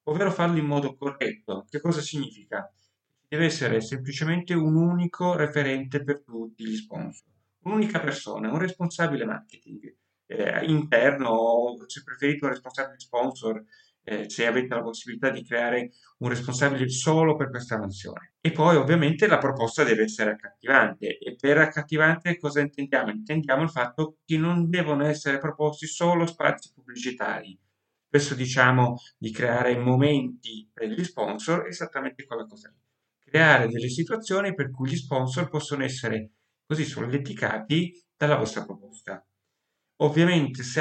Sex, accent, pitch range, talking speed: male, native, 120-155 Hz, 140 wpm